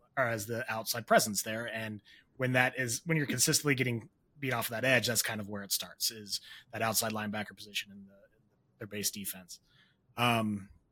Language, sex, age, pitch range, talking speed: English, male, 30-49, 115-155 Hz, 190 wpm